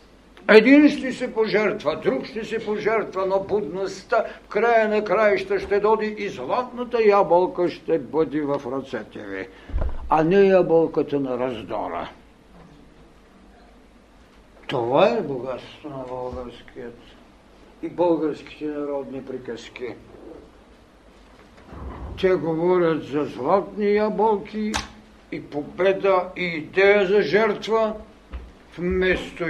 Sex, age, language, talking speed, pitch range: male, 60-79, Bulgarian, 100 wpm, 145-205 Hz